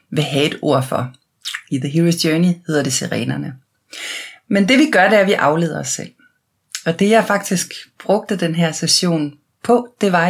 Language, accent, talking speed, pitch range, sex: Danish, native, 200 wpm, 155-190 Hz, female